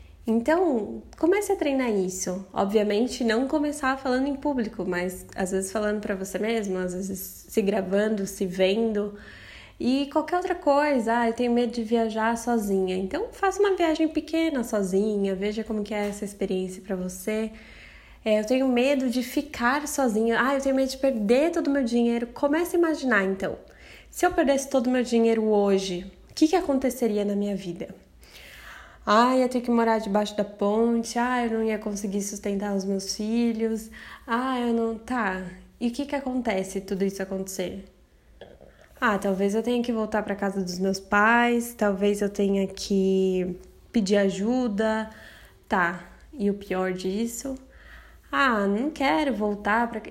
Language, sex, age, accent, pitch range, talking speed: Portuguese, female, 10-29, Brazilian, 195-255 Hz, 170 wpm